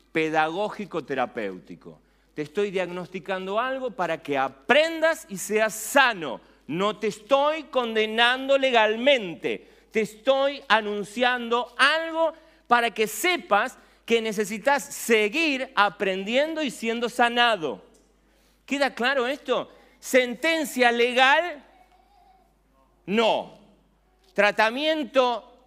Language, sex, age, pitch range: Spanish, male, 40-59, 175-260 Hz